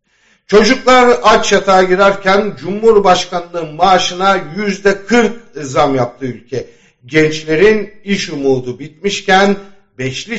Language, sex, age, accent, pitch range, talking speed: German, male, 60-79, Turkish, 145-215 Hz, 90 wpm